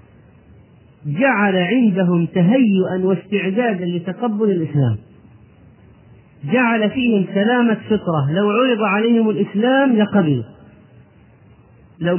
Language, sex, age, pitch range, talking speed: Arabic, male, 40-59, 140-205 Hz, 80 wpm